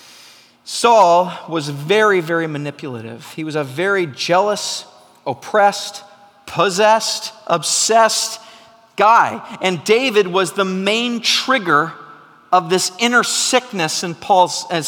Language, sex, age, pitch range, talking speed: English, male, 40-59, 150-205 Hz, 105 wpm